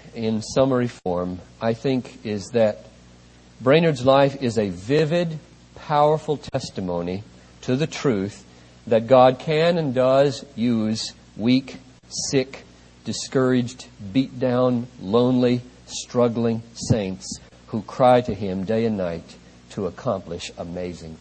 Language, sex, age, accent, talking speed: English, male, 50-69, American, 115 wpm